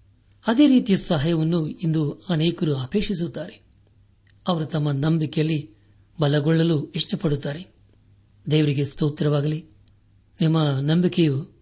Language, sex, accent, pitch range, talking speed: Kannada, male, native, 105-170 Hz, 75 wpm